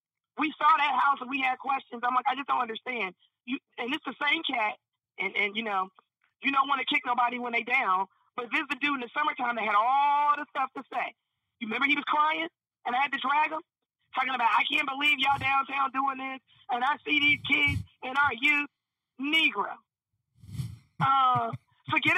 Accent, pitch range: American, 235-290 Hz